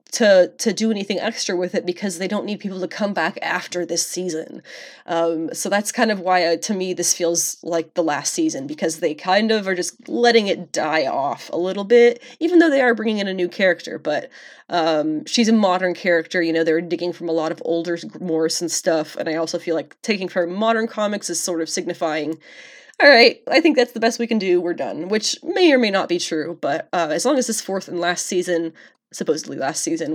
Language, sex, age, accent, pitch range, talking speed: English, female, 20-39, American, 170-225 Hz, 235 wpm